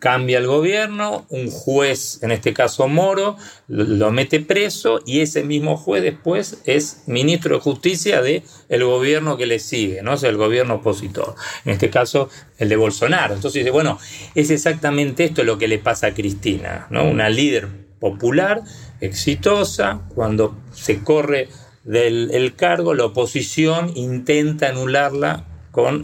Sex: male